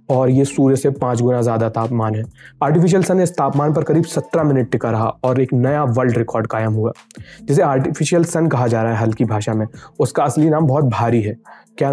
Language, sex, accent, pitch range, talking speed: Hindi, male, native, 120-155 Hz, 220 wpm